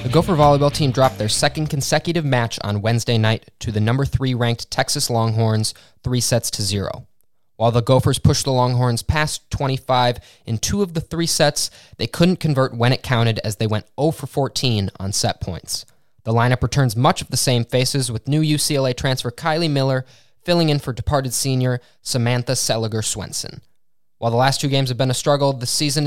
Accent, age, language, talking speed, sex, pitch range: American, 20-39, English, 190 wpm, male, 115-145 Hz